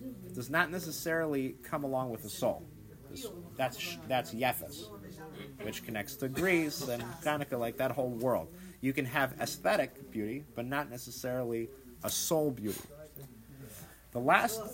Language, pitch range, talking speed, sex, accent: English, 120-155 Hz, 145 wpm, male, American